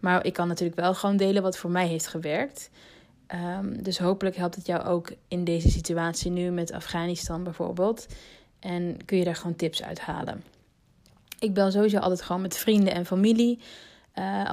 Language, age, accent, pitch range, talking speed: Dutch, 20-39, Dutch, 180-210 Hz, 180 wpm